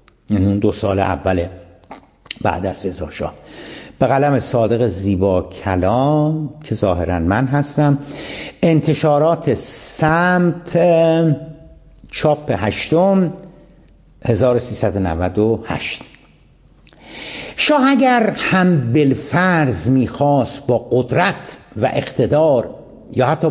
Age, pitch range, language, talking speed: 60-79, 100-165 Hz, Persian, 80 wpm